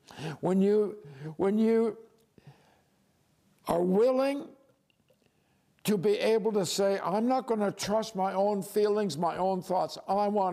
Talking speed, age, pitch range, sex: 135 wpm, 60-79, 165-215 Hz, male